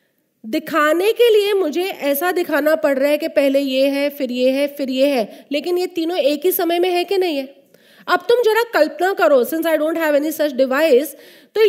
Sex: female